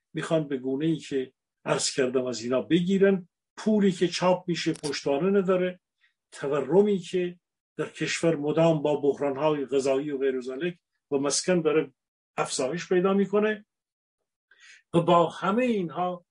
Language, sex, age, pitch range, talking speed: Persian, male, 50-69, 140-175 Hz, 135 wpm